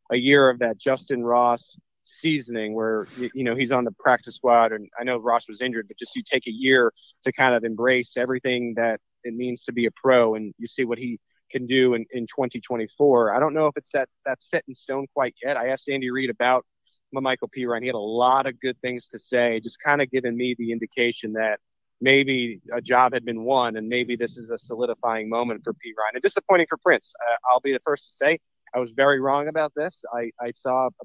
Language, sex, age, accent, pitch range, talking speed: English, male, 30-49, American, 115-135 Hz, 240 wpm